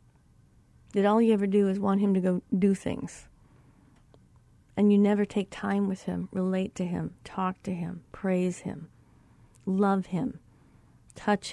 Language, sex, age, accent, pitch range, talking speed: English, female, 40-59, American, 180-225 Hz, 155 wpm